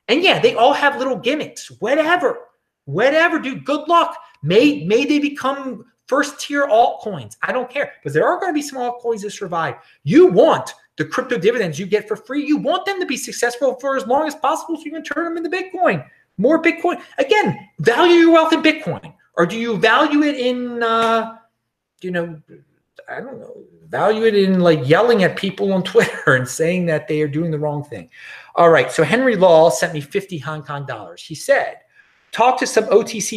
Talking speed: 205 wpm